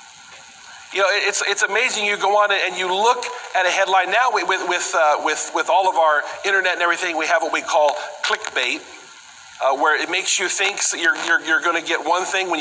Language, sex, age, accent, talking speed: English, male, 40-59, American, 225 wpm